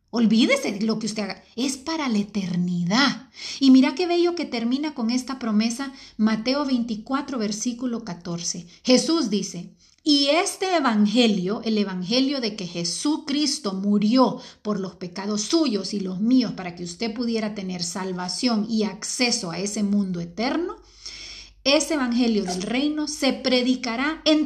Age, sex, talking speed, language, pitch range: 40-59, female, 145 wpm, Spanish, 200-275 Hz